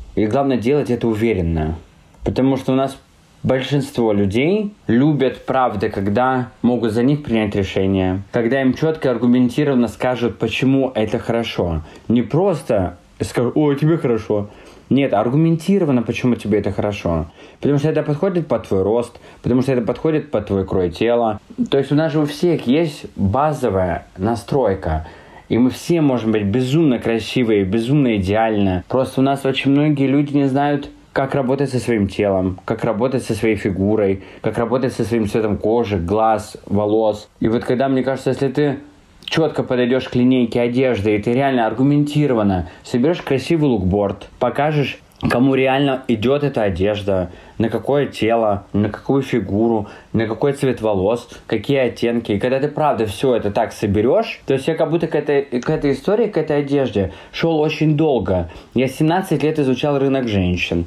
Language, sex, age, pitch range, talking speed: Russian, male, 20-39, 105-140 Hz, 165 wpm